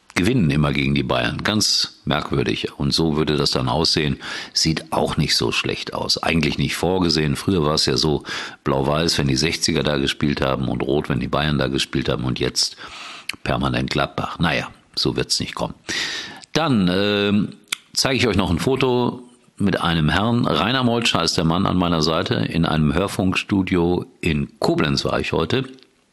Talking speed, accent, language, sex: 180 wpm, German, German, male